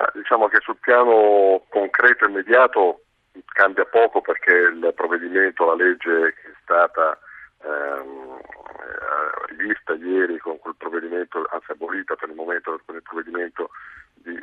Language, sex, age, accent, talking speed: Italian, male, 50-69, native, 135 wpm